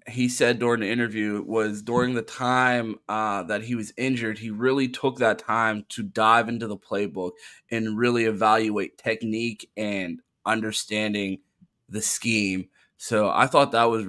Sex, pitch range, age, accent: male, 105-120 Hz, 20-39, American